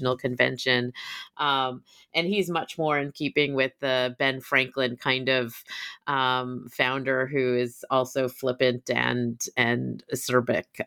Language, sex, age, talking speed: English, female, 30-49, 125 wpm